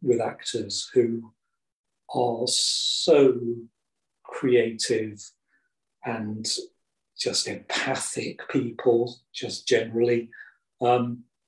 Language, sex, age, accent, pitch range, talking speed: English, male, 40-59, British, 110-140 Hz, 70 wpm